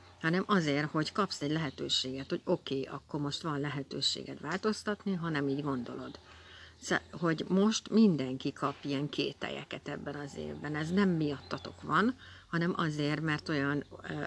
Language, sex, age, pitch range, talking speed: Hungarian, female, 60-79, 140-170 Hz, 155 wpm